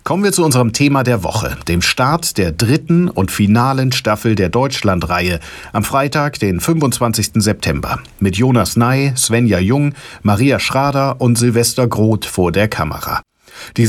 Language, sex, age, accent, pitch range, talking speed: German, male, 50-69, German, 100-135 Hz, 150 wpm